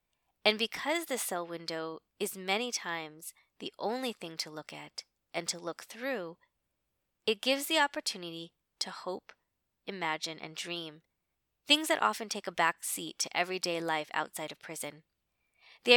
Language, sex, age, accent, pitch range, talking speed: English, female, 20-39, American, 165-215 Hz, 155 wpm